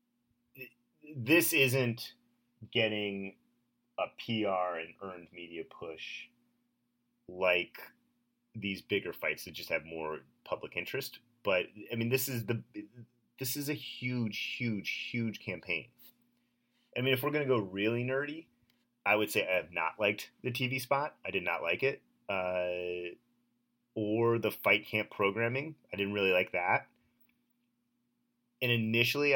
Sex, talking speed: male, 140 wpm